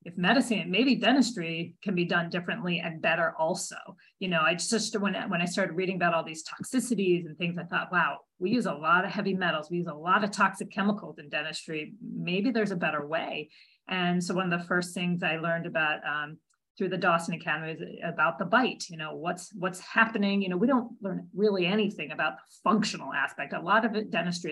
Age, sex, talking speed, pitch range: 30-49, female, 220 wpm, 170-205 Hz